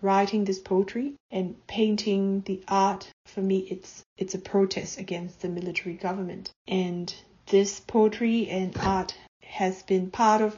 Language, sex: English, female